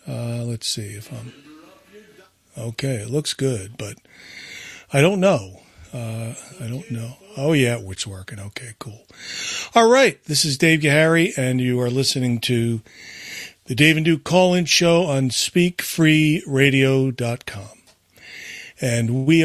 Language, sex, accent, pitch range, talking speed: English, male, American, 115-160 Hz, 135 wpm